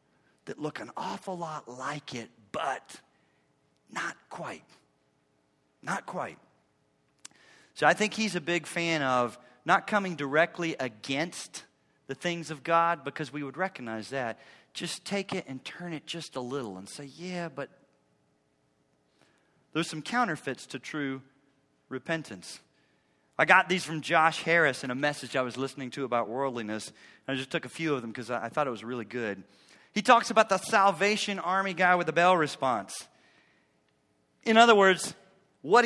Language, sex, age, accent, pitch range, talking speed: English, male, 40-59, American, 100-170 Hz, 160 wpm